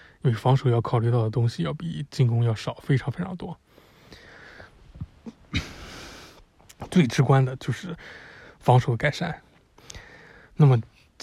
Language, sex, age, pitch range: Chinese, male, 20-39, 115-140 Hz